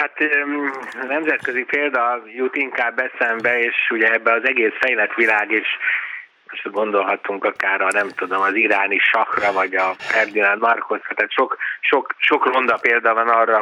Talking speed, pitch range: 150 wpm, 110-130 Hz